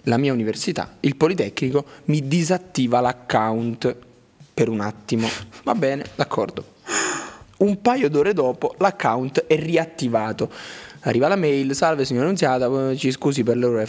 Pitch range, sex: 135-195 Hz, male